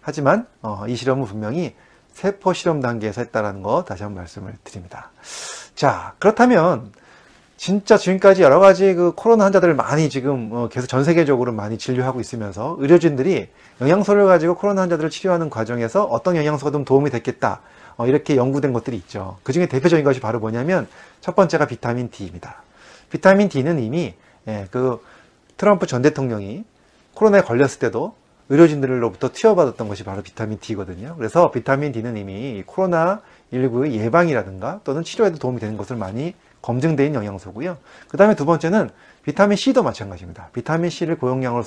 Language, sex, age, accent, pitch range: Korean, male, 30-49, native, 110-170 Hz